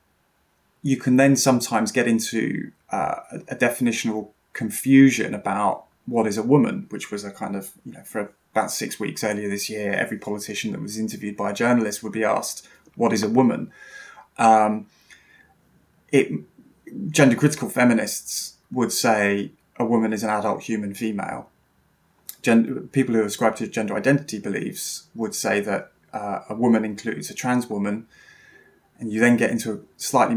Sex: male